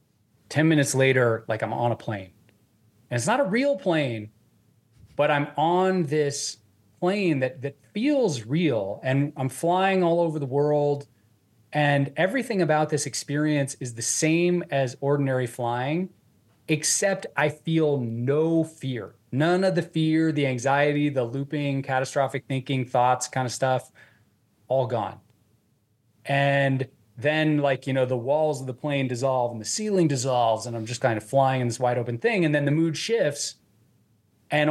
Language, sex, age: English, male, 30-49